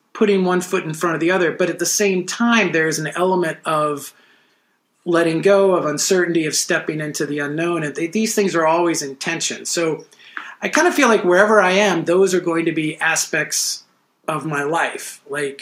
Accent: American